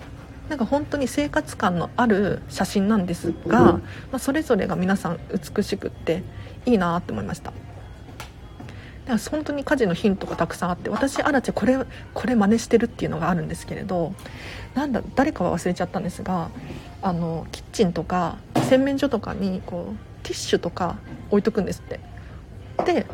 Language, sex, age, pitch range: Japanese, female, 40-59, 175-240 Hz